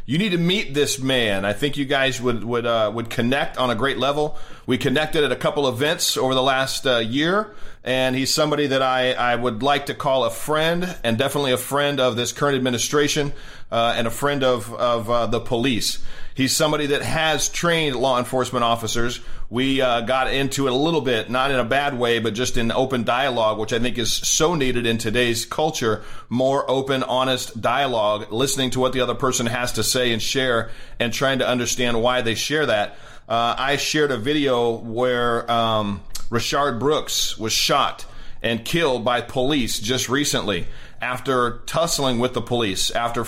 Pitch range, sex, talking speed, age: 120-145 Hz, male, 195 wpm, 40-59